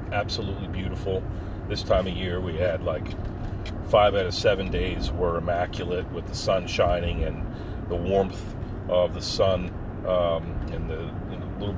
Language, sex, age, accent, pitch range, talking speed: English, male, 40-59, American, 90-110 Hz, 160 wpm